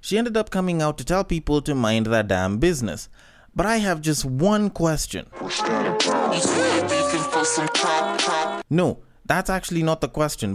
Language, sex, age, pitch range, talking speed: English, male, 20-39, 115-165 Hz, 140 wpm